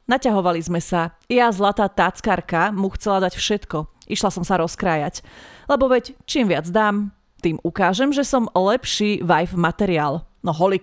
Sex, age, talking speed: female, 30-49, 155 wpm